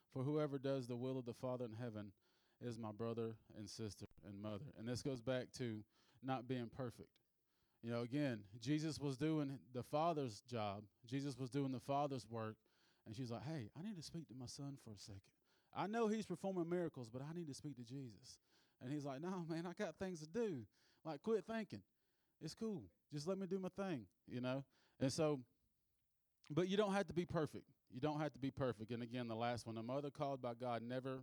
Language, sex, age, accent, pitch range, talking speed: English, male, 30-49, American, 110-145 Hz, 220 wpm